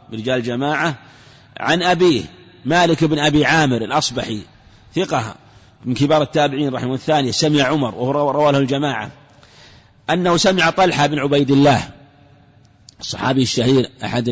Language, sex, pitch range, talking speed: Arabic, male, 120-155 Hz, 125 wpm